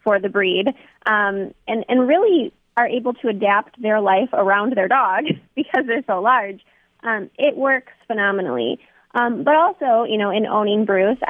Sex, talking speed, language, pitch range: female, 170 wpm, English, 210-270 Hz